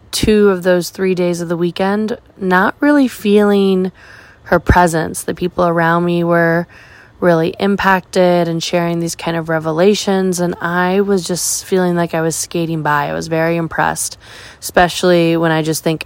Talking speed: 170 wpm